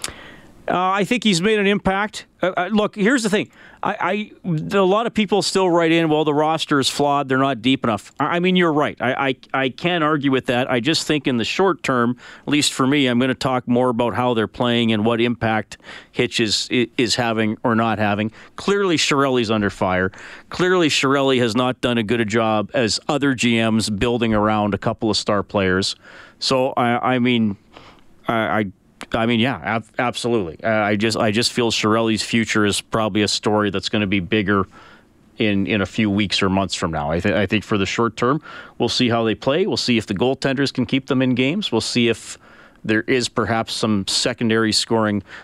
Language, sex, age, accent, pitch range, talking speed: English, male, 40-59, American, 105-140 Hz, 215 wpm